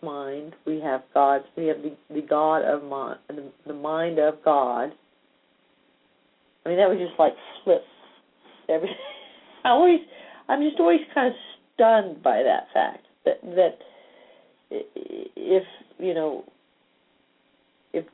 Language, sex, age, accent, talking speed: English, female, 50-69, American, 135 wpm